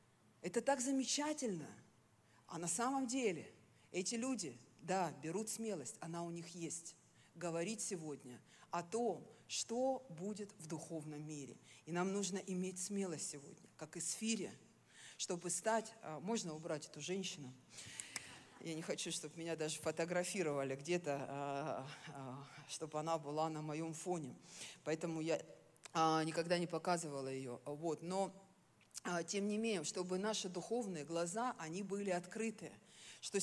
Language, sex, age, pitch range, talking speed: Russian, female, 50-69, 160-215 Hz, 130 wpm